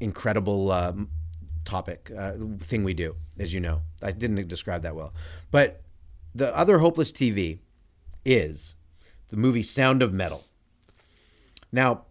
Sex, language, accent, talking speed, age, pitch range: male, English, American, 135 wpm, 30-49, 85-125 Hz